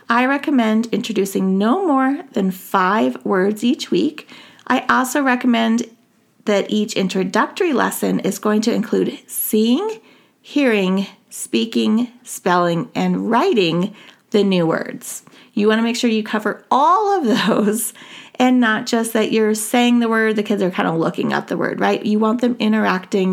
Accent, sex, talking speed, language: American, female, 155 wpm, English